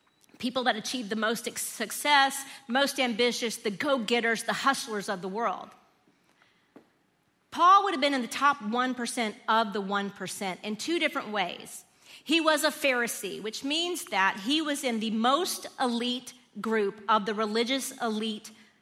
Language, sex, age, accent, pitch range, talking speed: English, female, 40-59, American, 230-295 Hz, 155 wpm